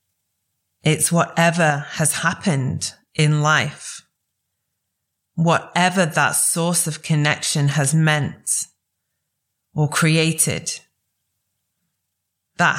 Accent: British